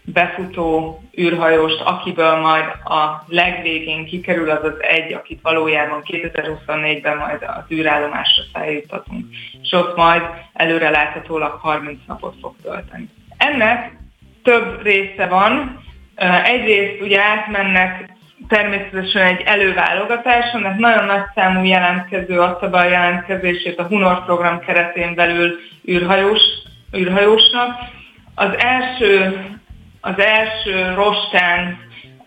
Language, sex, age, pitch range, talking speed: Hungarian, female, 20-39, 165-195 Hz, 105 wpm